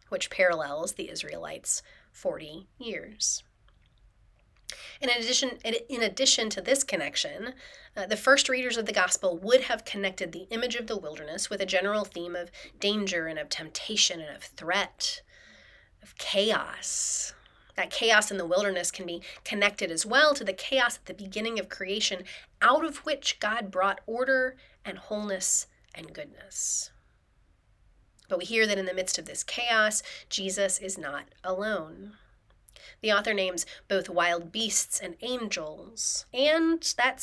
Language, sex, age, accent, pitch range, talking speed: English, female, 30-49, American, 180-240 Hz, 150 wpm